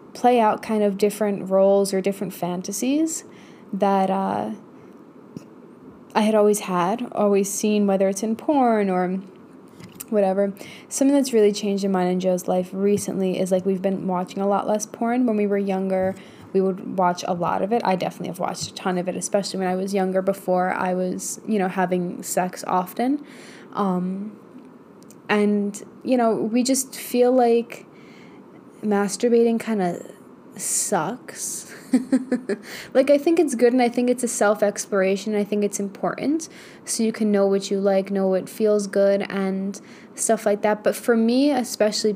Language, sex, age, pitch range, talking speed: English, female, 10-29, 190-220 Hz, 170 wpm